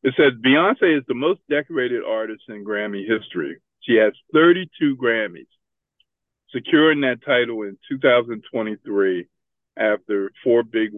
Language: English